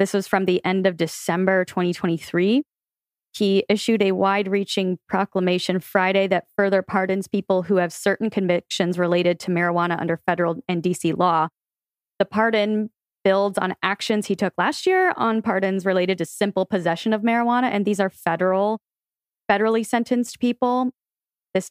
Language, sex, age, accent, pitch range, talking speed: English, female, 20-39, American, 175-205 Hz, 150 wpm